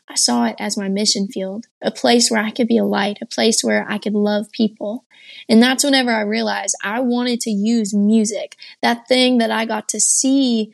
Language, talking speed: English, 220 wpm